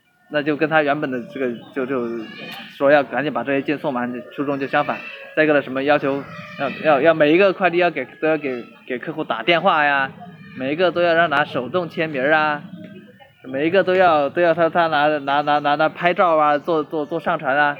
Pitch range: 145-180 Hz